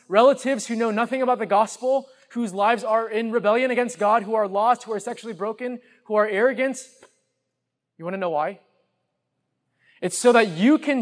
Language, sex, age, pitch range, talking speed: English, male, 20-39, 210-250 Hz, 185 wpm